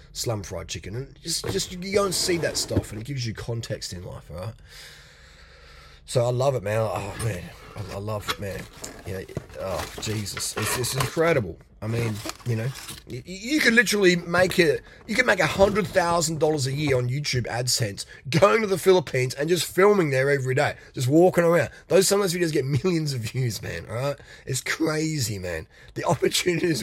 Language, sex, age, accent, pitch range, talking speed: English, male, 20-39, Australian, 115-170 Hz, 195 wpm